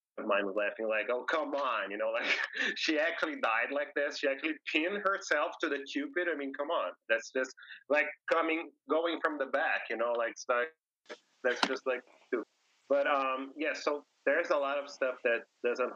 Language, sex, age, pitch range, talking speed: English, male, 30-49, 110-145 Hz, 205 wpm